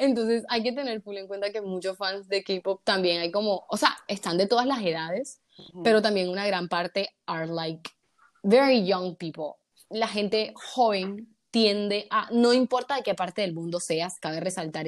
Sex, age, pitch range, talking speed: female, 20-39, 180-220 Hz, 185 wpm